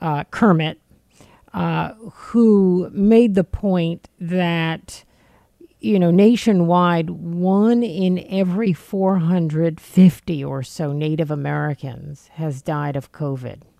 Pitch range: 150-190 Hz